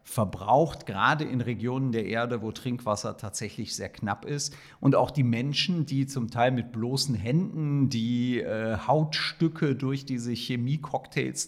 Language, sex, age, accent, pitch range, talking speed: German, male, 40-59, German, 115-140 Hz, 145 wpm